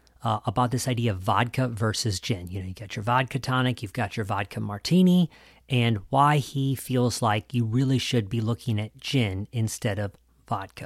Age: 40-59